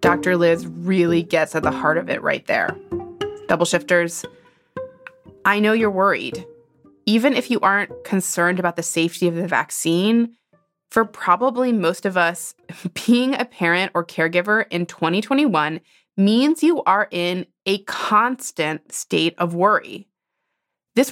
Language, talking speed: English, 140 wpm